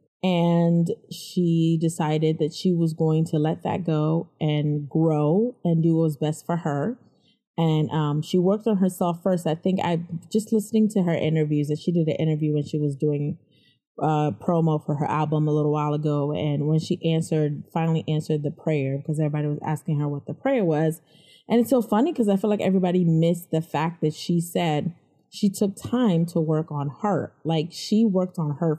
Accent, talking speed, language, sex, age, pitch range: American, 200 wpm, English, female, 20-39, 150-180 Hz